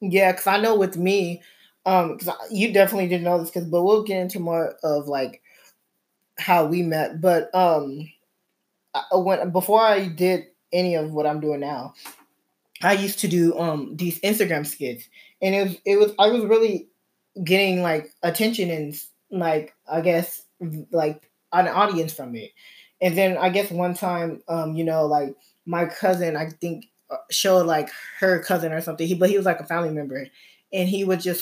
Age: 20-39